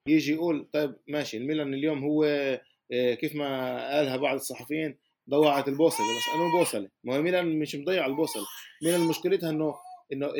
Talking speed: 150 wpm